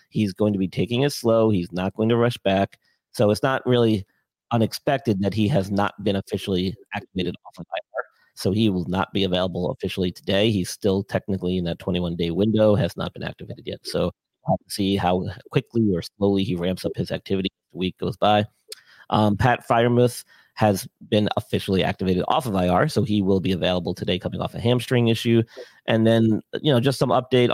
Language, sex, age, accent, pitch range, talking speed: English, male, 40-59, American, 90-110 Hz, 205 wpm